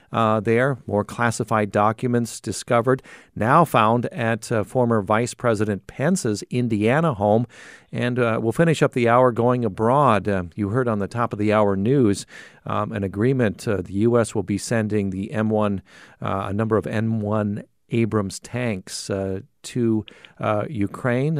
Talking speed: 165 wpm